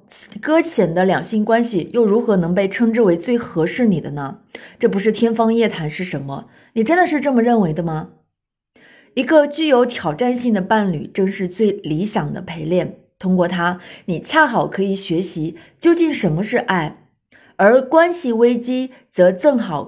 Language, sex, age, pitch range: Chinese, female, 20-39, 180-250 Hz